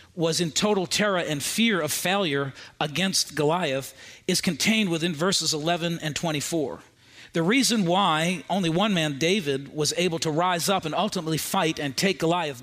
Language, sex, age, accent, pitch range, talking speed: English, male, 40-59, American, 150-195 Hz, 165 wpm